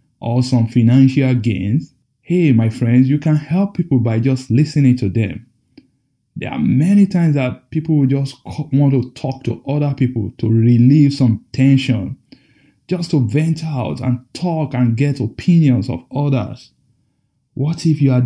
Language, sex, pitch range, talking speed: English, male, 125-145 Hz, 160 wpm